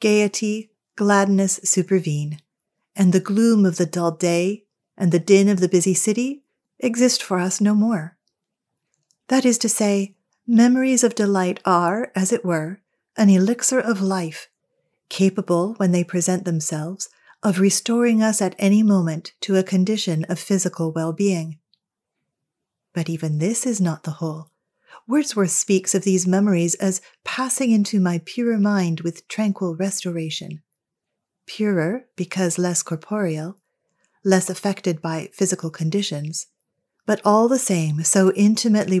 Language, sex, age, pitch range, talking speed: English, female, 40-59, 175-210 Hz, 140 wpm